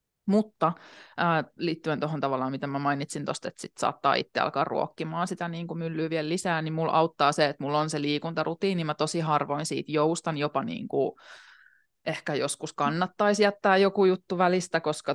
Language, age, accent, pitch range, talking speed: Finnish, 30-49, native, 140-165 Hz, 170 wpm